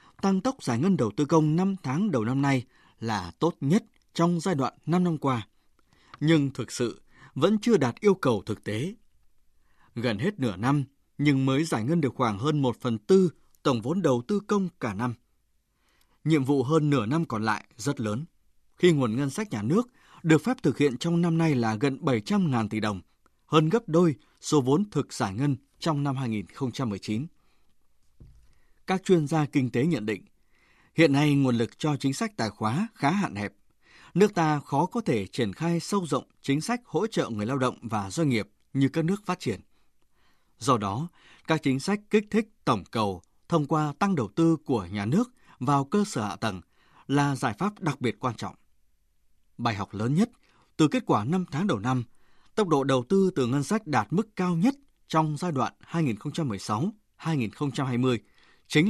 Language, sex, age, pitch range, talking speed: Vietnamese, male, 20-39, 115-170 Hz, 195 wpm